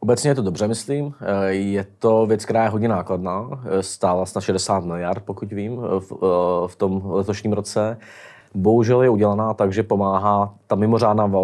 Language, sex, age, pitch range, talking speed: Czech, male, 20-39, 100-115 Hz, 150 wpm